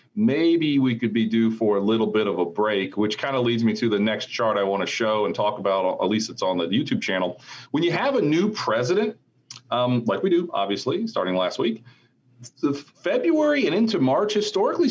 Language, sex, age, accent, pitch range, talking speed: English, male, 40-59, American, 115-170 Hz, 215 wpm